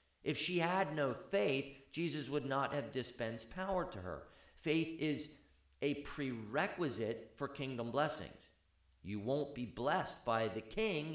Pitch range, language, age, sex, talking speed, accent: 120-170 Hz, English, 50-69, male, 145 wpm, American